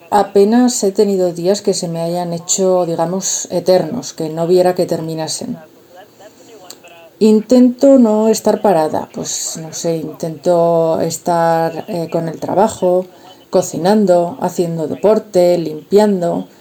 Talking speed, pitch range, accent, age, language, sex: 120 wpm, 170-210 Hz, Spanish, 30-49, Spanish, female